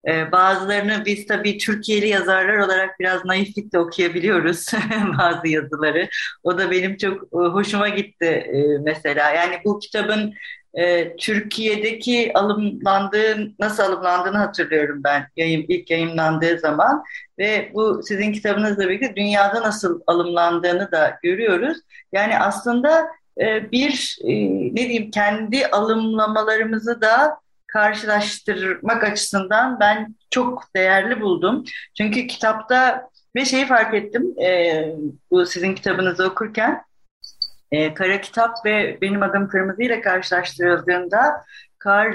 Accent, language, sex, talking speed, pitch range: native, Turkish, female, 105 wpm, 180-220 Hz